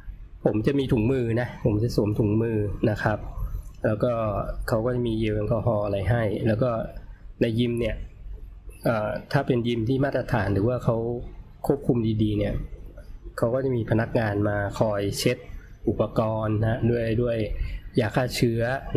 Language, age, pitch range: Thai, 20-39, 100-125 Hz